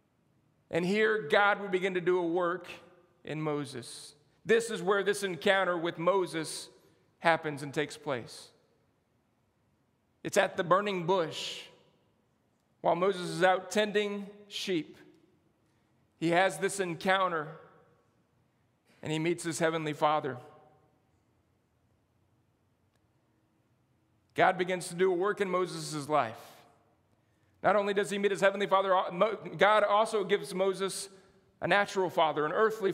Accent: American